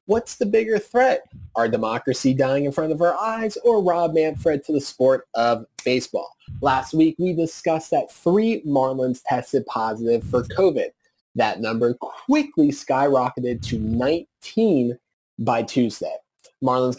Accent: American